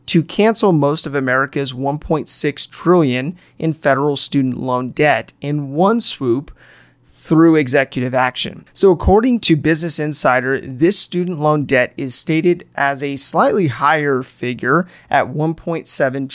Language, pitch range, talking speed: English, 130-165 Hz, 130 wpm